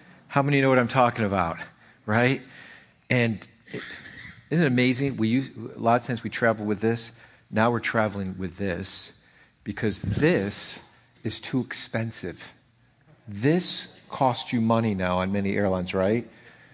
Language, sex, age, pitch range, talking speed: English, male, 50-69, 110-135 Hz, 140 wpm